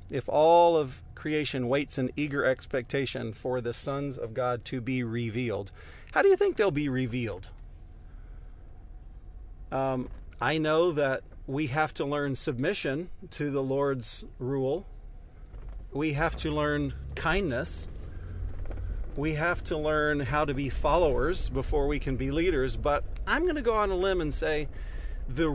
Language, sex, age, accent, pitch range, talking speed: English, male, 40-59, American, 105-155 Hz, 155 wpm